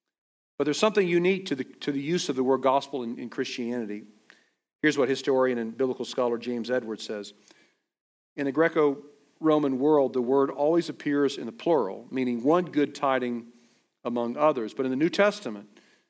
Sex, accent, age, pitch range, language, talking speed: male, American, 50-69, 120-145 Hz, English, 175 wpm